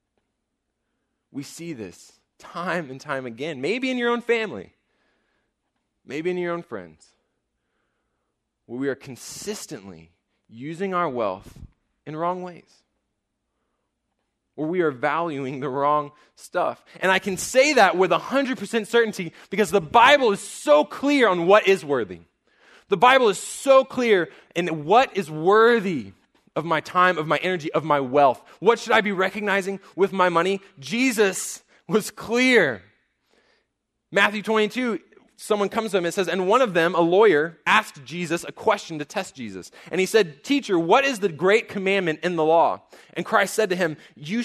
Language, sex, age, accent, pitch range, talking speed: English, male, 20-39, American, 140-210 Hz, 160 wpm